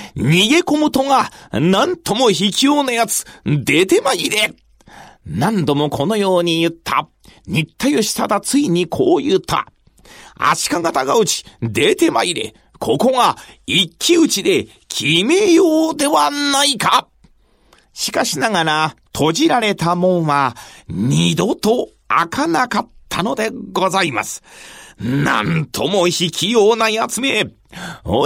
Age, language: 40-59, Japanese